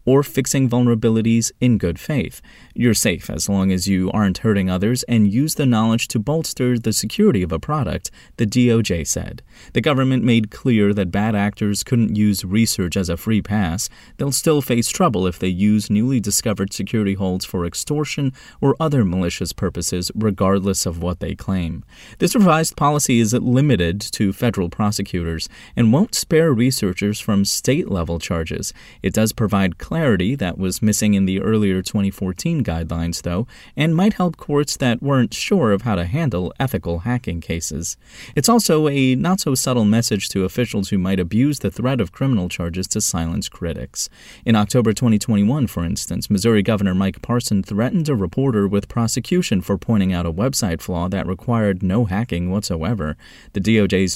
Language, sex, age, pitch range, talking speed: English, male, 30-49, 95-125 Hz, 165 wpm